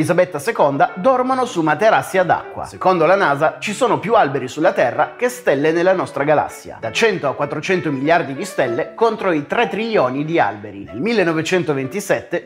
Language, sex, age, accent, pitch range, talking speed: Italian, male, 30-49, native, 155-220 Hz, 175 wpm